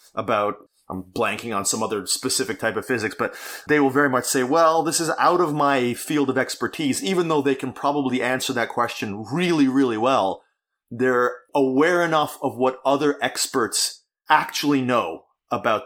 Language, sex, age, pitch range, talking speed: English, male, 30-49, 115-140 Hz, 175 wpm